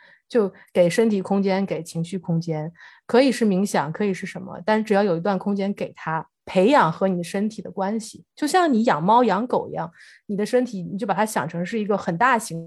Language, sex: Chinese, female